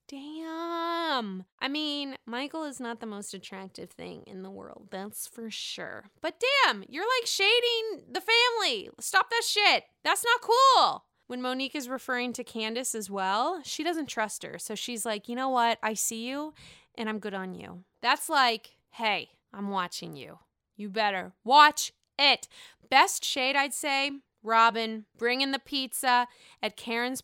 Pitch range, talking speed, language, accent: 220-310 Hz, 165 wpm, English, American